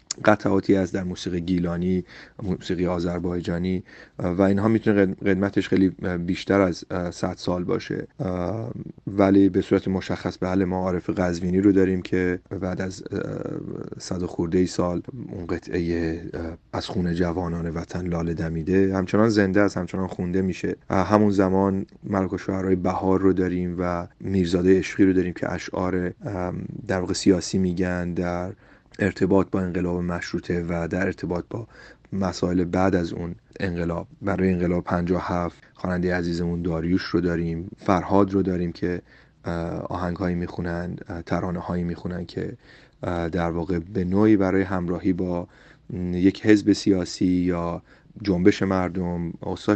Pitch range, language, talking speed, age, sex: 85-95 Hz, Persian, 135 wpm, 30-49, male